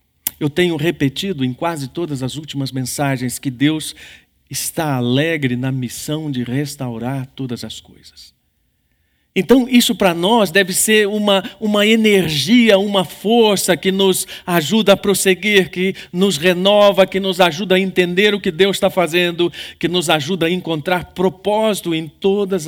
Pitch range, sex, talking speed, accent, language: 120-180 Hz, male, 150 wpm, Brazilian, Portuguese